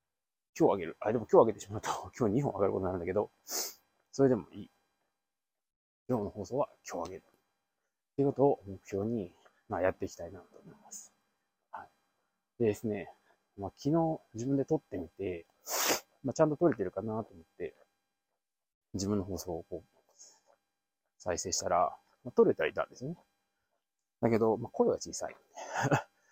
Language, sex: Japanese, male